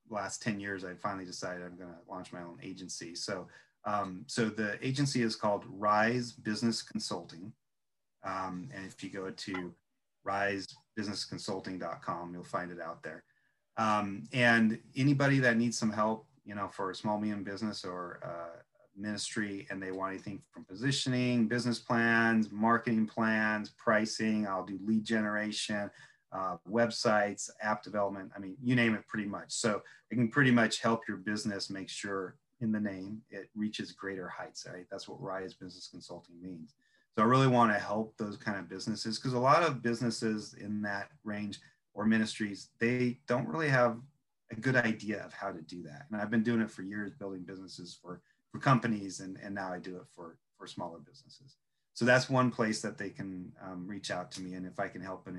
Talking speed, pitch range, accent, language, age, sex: 190 wpm, 95-115 Hz, American, English, 30-49, male